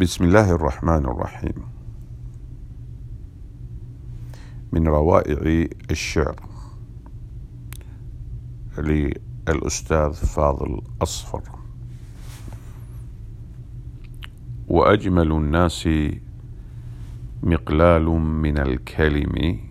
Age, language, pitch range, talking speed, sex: 50-69, English, 75-115 Hz, 50 wpm, male